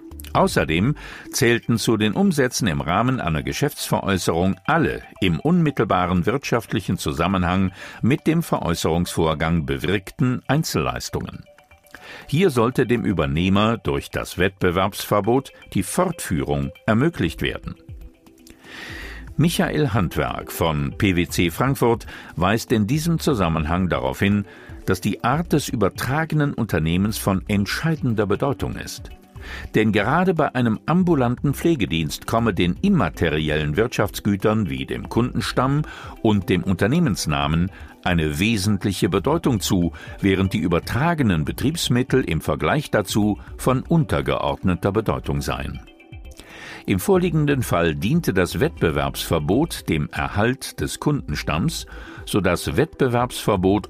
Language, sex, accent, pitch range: German, male, German, 85-125 Hz